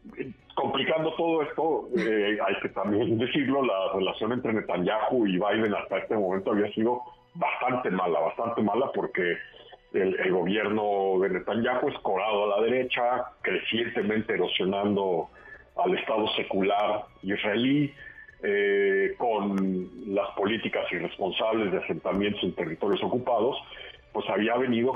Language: Spanish